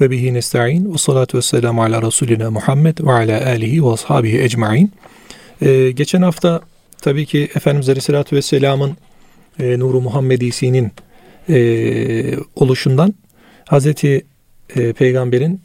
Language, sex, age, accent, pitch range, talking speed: Turkish, male, 40-59, native, 130-170 Hz, 105 wpm